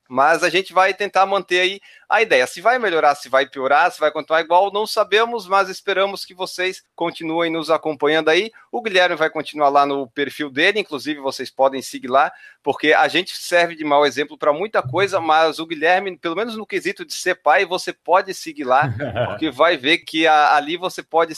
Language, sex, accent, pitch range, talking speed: Portuguese, male, Brazilian, 145-190 Hz, 210 wpm